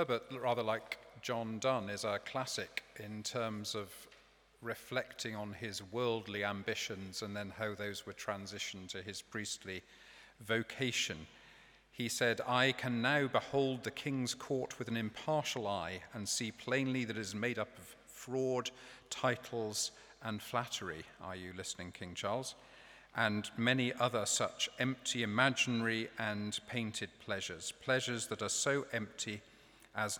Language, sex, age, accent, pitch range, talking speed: English, male, 40-59, British, 100-120 Hz, 145 wpm